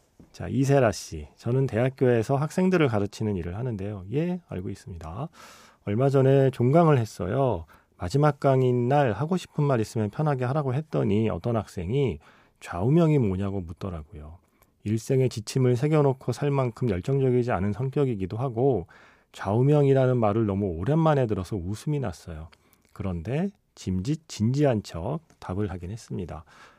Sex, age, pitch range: male, 40-59, 100-140 Hz